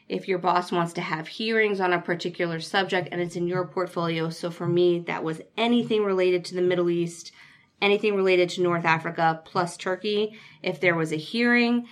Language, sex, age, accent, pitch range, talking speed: English, female, 20-39, American, 165-195 Hz, 195 wpm